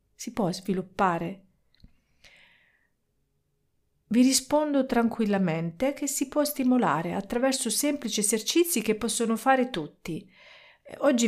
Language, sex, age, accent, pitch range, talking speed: Italian, female, 40-59, native, 180-235 Hz, 95 wpm